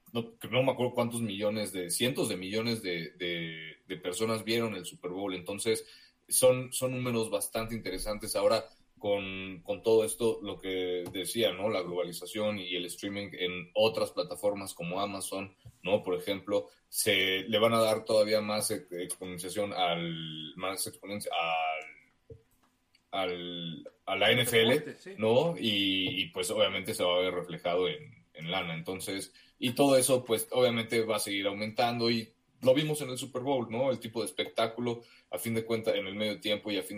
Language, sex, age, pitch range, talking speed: Spanish, male, 30-49, 90-115 Hz, 175 wpm